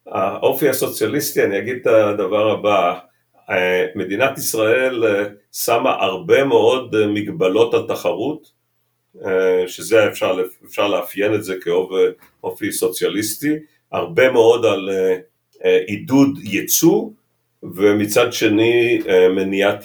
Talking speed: 90 wpm